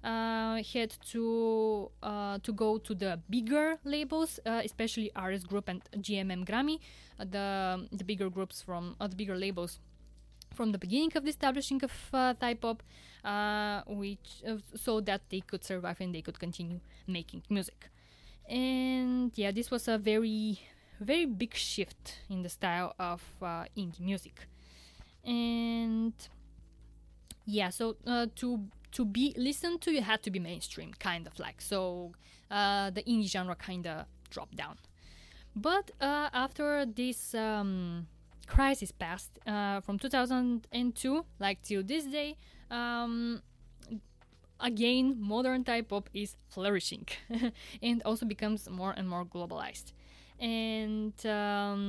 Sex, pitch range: female, 185-235 Hz